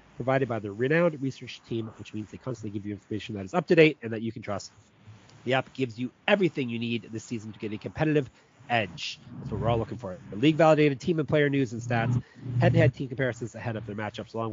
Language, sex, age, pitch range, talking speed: English, male, 30-49, 110-140 Hz, 235 wpm